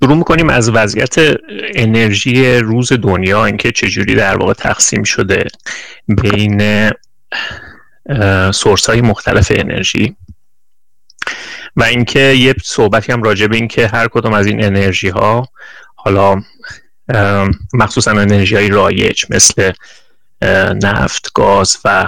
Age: 30-49